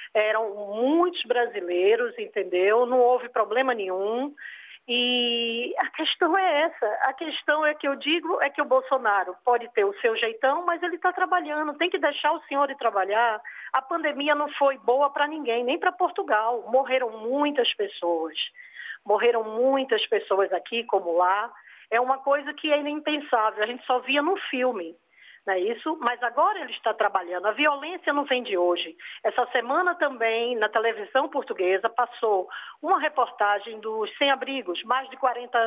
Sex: female